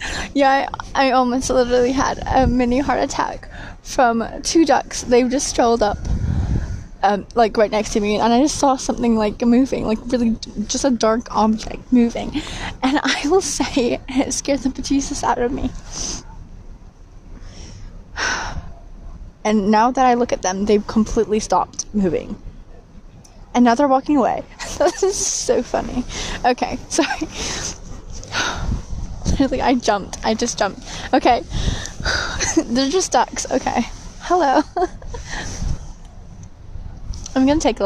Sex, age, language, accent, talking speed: female, 20-39, English, American, 135 wpm